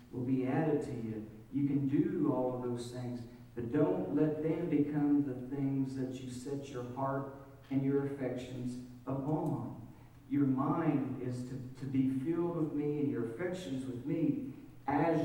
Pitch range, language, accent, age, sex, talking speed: 130-160 Hz, English, American, 50-69, male, 170 wpm